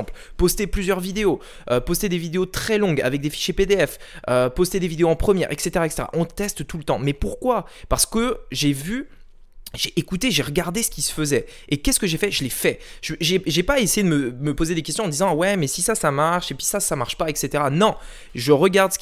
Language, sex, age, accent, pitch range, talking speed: French, male, 20-39, French, 145-190 Hz, 250 wpm